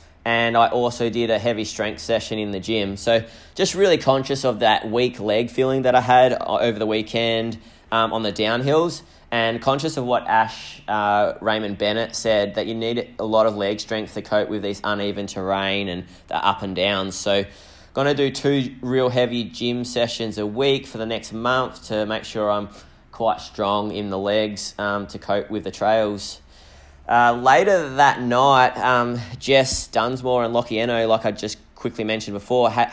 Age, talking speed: 20-39, 190 wpm